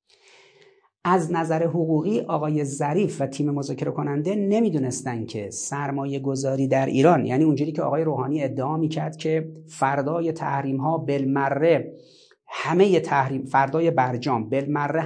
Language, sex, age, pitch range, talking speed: Persian, male, 40-59, 130-165 Hz, 130 wpm